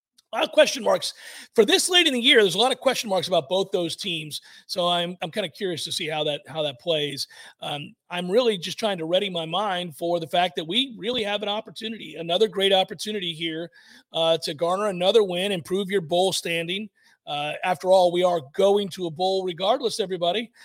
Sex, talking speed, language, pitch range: male, 220 wpm, English, 180-220 Hz